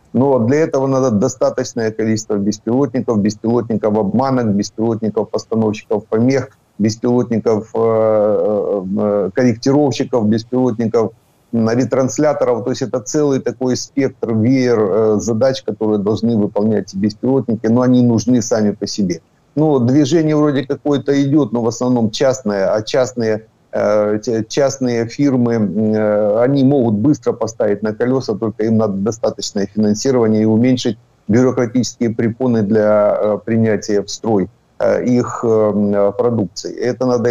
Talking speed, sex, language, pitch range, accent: 115 wpm, male, Ukrainian, 110-130 Hz, native